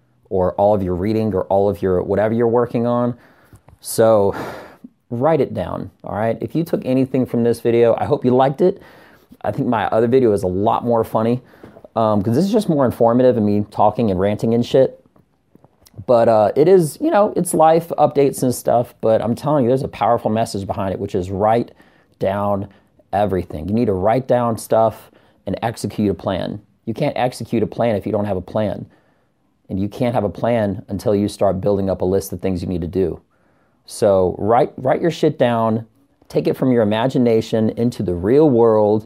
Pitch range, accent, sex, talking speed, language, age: 100-125 Hz, American, male, 210 wpm, English, 30-49